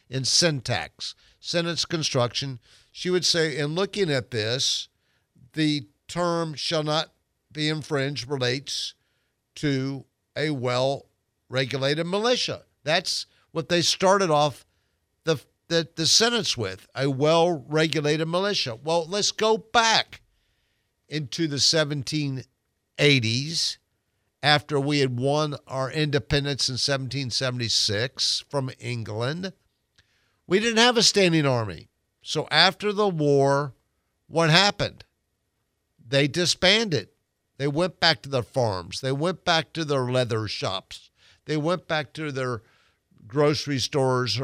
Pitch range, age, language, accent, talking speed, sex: 120-160 Hz, 60-79, English, American, 115 wpm, male